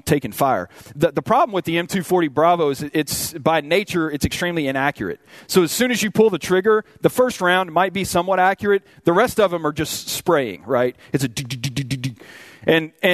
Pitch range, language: 155-205 Hz, English